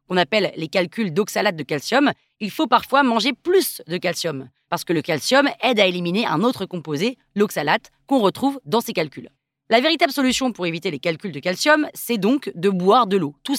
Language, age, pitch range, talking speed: French, 30-49, 185-250 Hz, 205 wpm